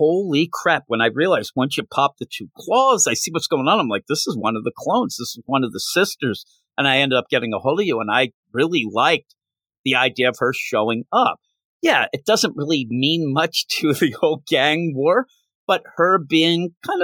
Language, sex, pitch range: English, male, 140-190 Hz